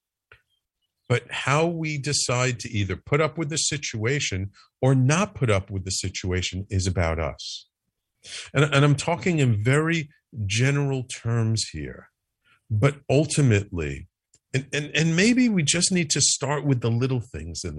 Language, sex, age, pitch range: English, male, 50-69, 100-140 Hz